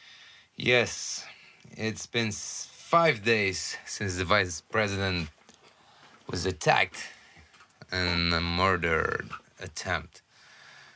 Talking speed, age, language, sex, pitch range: 75 wpm, 30-49, English, male, 90-115 Hz